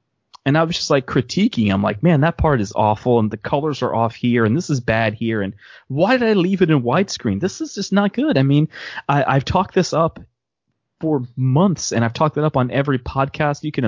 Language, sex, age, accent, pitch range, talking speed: English, male, 20-39, American, 105-145 Hz, 240 wpm